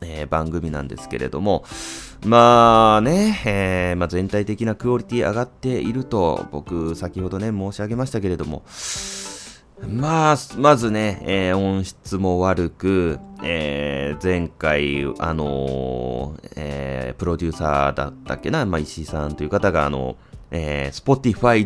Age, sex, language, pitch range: 30-49, male, Japanese, 80-125 Hz